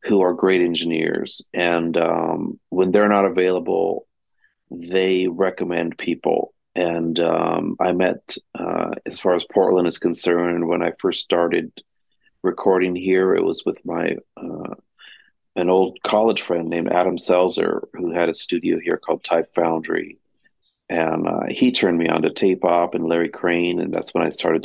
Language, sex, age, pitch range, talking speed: English, male, 40-59, 85-95 Hz, 165 wpm